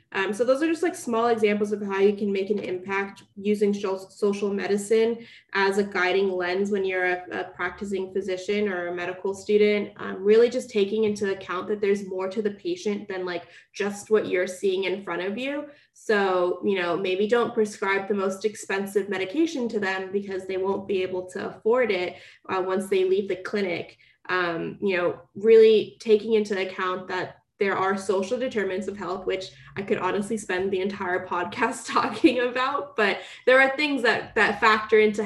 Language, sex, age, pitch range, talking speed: English, female, 20-39, 185-210 Hz, 190 wpm